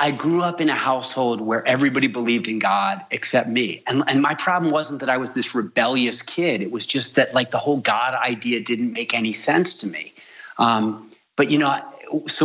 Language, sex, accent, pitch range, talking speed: English, male, American, 130-155 Hz, 210 wpm